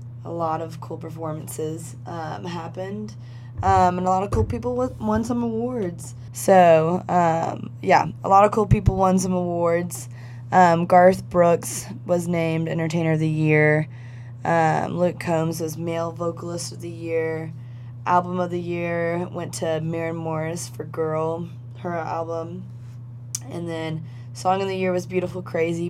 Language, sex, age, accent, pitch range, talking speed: English, female, 20-39, American, 120-170 Hz, 155 wpm